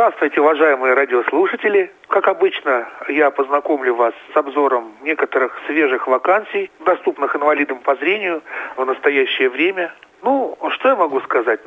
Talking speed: 130 wpm